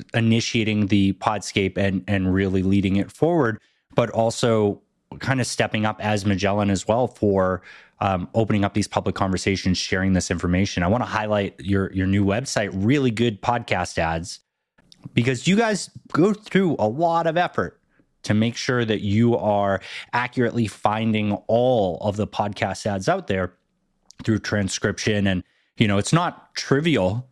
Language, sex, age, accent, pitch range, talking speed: English, male, 30-49, American, 95-115 Hz, 160 wpm